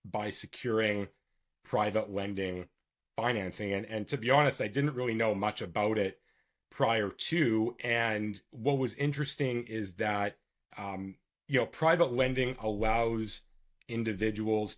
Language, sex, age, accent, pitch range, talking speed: English, male, 40-59, American, 100-130 Hz, 130 wpm